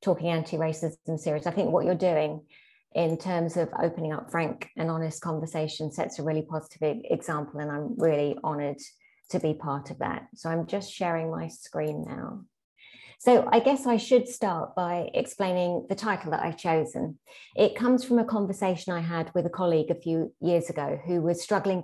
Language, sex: English, female